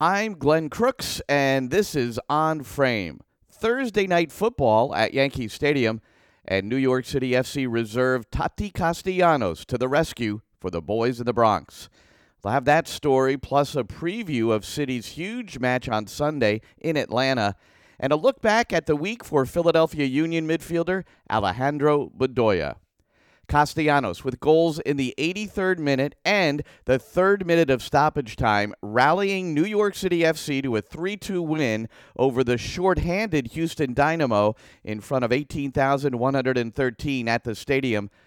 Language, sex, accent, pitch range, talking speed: English, male, American, 125-165 Hz, 145 wpm